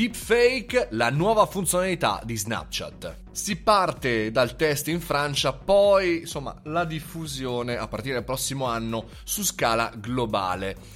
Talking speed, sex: 130 wpm, male